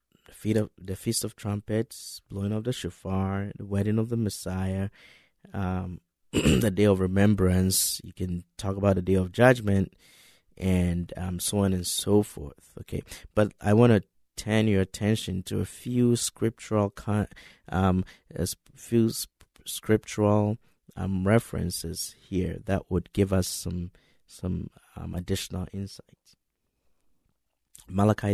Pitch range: 90-105 Hz